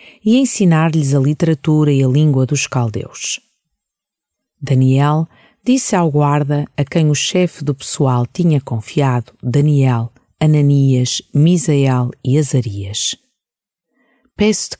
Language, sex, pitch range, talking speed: Portuguese, female, 140-180 Hz, 110 wpm